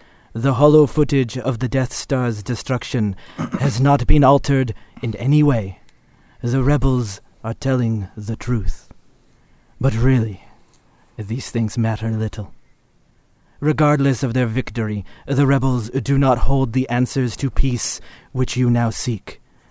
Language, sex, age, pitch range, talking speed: English, male, 30-49, 120-150 Hz, 135 wpm